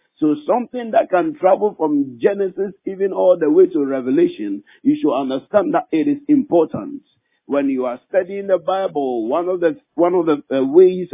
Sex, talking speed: male, 185 wpm